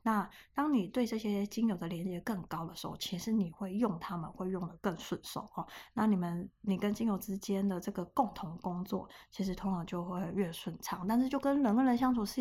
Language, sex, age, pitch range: Chinese, female, 20-39, 185-230 Hz